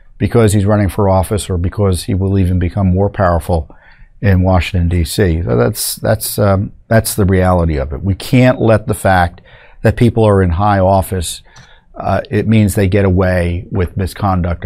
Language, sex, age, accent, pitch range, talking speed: English, male, 50-69, American, 95-115 Hz, 175 wpm